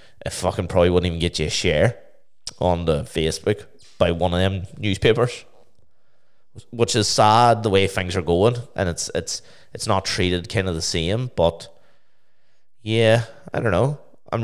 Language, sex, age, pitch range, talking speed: English, male, 20-39, 85-110 Hz, 170 wpm